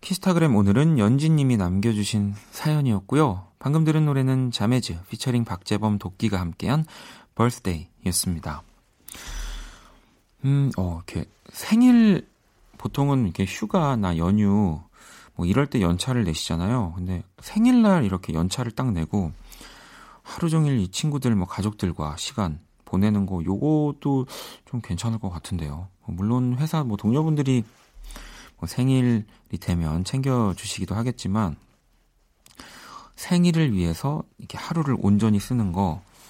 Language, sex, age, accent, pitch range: Korean, male, 40-59, native, 90-130 Hz